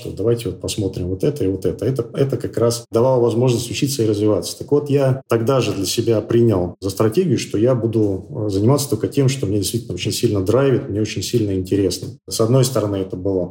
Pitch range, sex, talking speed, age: 100-120 Hz, male, 215 wpm, 40-59